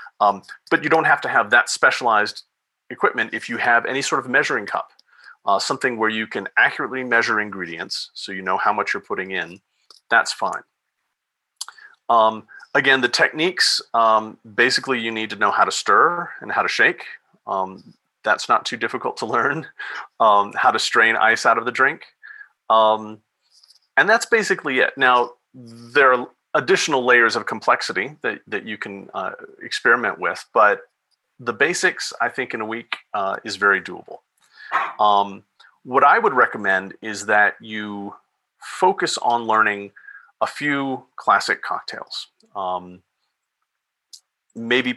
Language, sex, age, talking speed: English, male, 40-59, 155 wpm